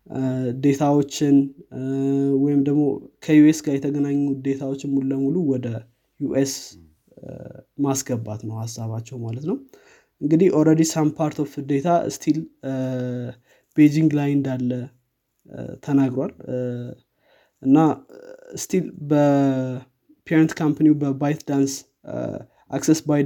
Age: 20-39